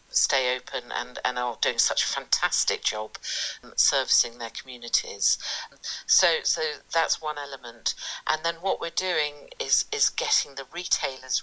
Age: 50-69